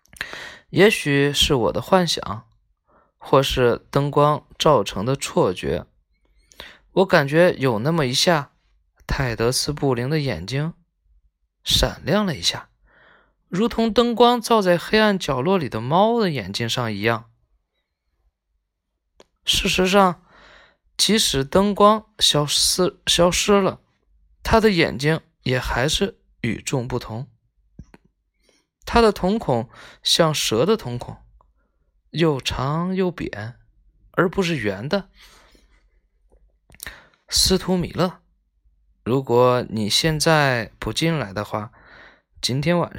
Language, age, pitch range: Chinese, 20-39, 115-175 Hz